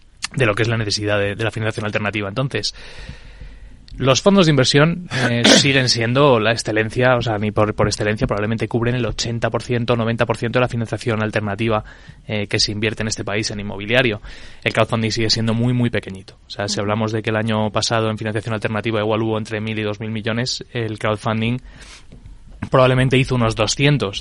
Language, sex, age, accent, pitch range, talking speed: Spanish, male, 20-39, Spanish, 105-120 Hz, 195 wpm